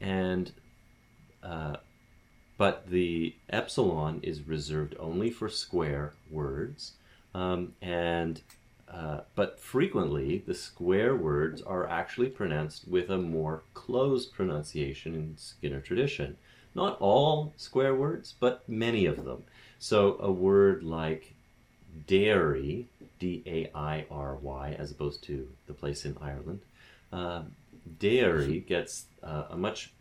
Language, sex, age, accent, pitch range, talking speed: English, male, 30-49, American, 75-100 Hz, 115 wpm